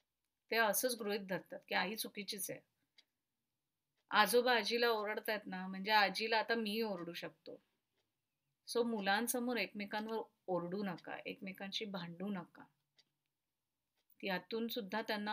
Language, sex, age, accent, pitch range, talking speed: Marathi, female, 30-49, native, 190-230 Hz, 65 wpm